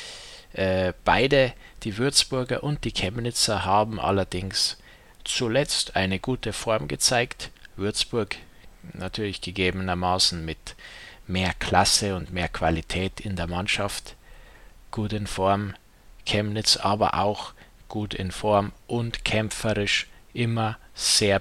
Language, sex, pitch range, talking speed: German, male, 95-115 Hz, 105 wpm